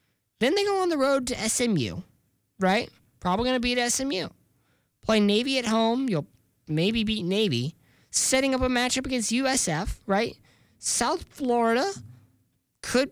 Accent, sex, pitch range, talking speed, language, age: American, male, 150-235 Hz, 140 wpm, English, 20-39